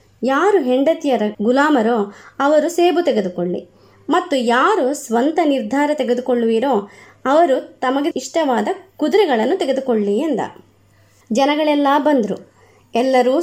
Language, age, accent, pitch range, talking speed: Kannada, 20-39, native, 235-330 Hz, 90 wpm